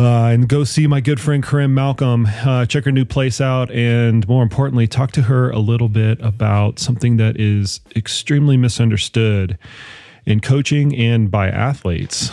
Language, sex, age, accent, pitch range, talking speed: English, male, 30-49, American, 100-120 Hz, 170 wpm